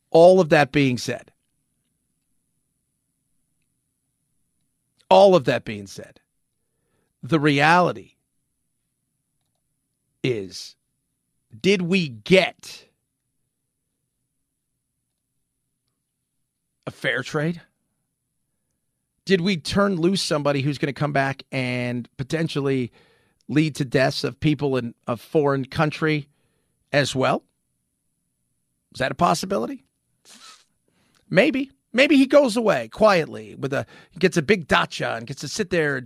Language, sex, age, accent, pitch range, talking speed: English, male, 40-59, American, 135-185 Hz, 105 wpm